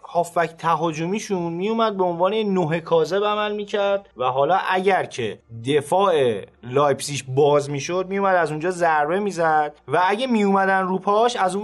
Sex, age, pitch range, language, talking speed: male, 30-49, 145-195 Hz, Persian, 150 wpm